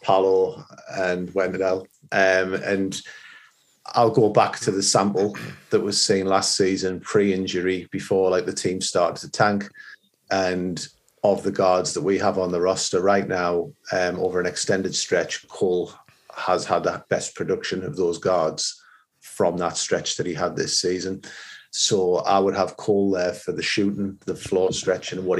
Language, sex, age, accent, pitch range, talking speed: English, male, 40-59, British, 90-100 Hz, 170 wpm